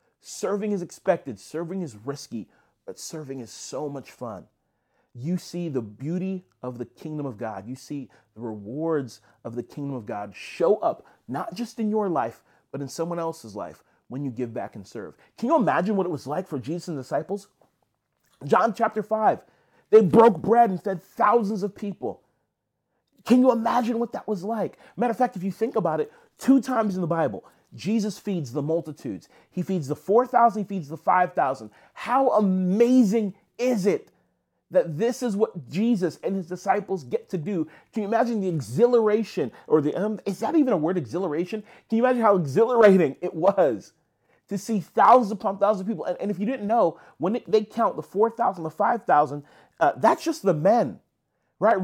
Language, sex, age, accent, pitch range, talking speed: English, male, 30-49, American, 155-225 Hz, 190 wpm